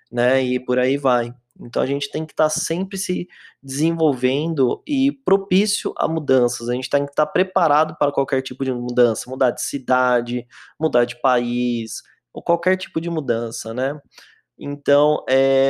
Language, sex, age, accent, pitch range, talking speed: Portuguese, male, 20-39, Brazilian, 130-155 Hz, 170 wpm